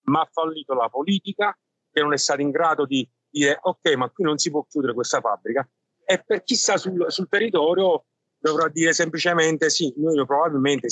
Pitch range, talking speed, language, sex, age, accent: 140-190 Hz, 190 wpm, Italian, male, 50-69, native